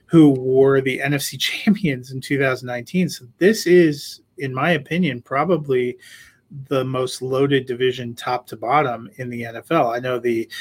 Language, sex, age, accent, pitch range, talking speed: English, male, 30-49, American, 120-140 Hz, 155 wpm